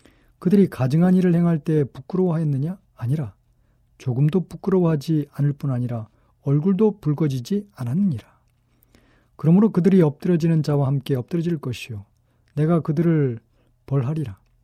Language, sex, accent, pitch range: Korean, male, native, 120-170 Hz